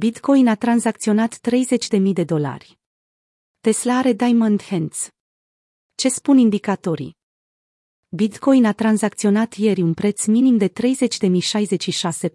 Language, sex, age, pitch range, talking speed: Romanian, female, 30-49, 175-230 Hz, 115 wpm